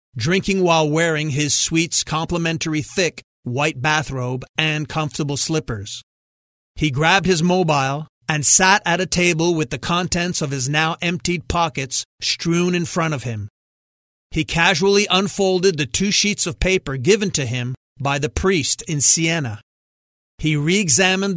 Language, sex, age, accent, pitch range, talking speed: English, male, 40-59, American, 135-180 Hz, 145 wpm